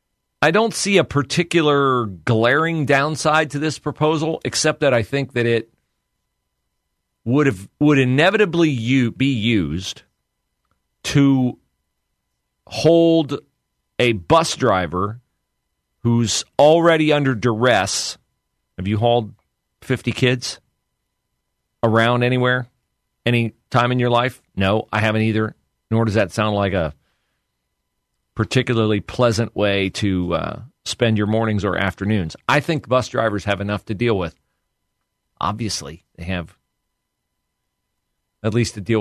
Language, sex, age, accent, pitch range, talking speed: English, male, 40-59, American, 100-130 Hz, 125 wpm